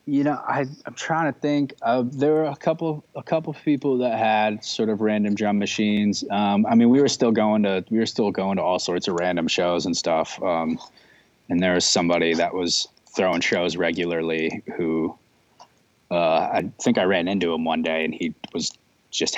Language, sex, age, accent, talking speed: English, male, 20-39, American, 210 wpm